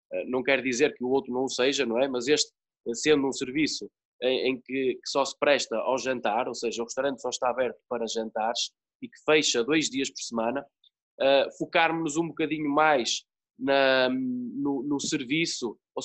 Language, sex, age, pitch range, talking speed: Portuguese, male, 20-39, 130-155 Hz, 190 wpm